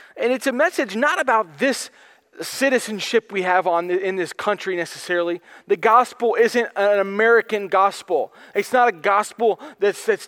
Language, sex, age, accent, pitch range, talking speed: English, male, 30-49, American, 195-245 Hz, 165 wpm